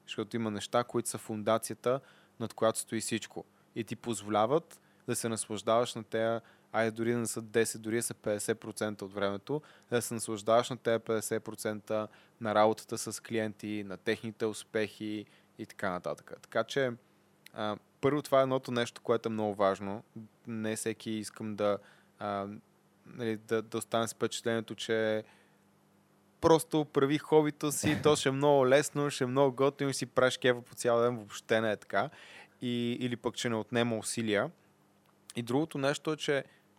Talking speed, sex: 170 wpm, male